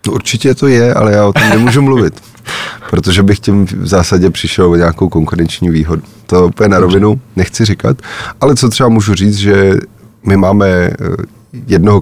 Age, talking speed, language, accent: 30-49, 175 wpm, Czech, native